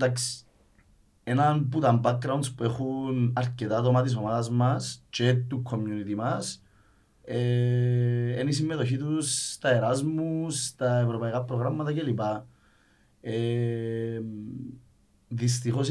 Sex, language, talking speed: male, Greek, 100 wpm